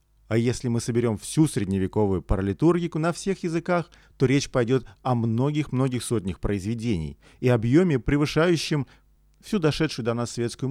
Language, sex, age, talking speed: Russian, male, 40-59, 140 wpm